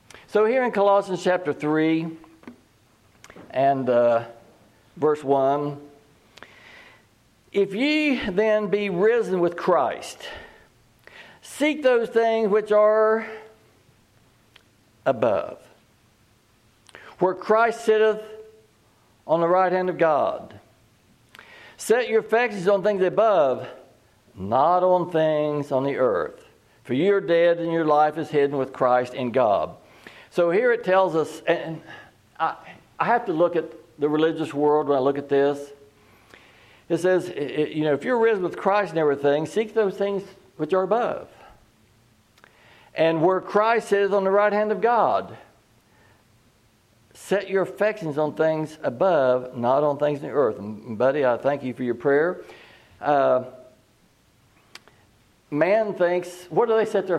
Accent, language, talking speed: American, English, 140 wpm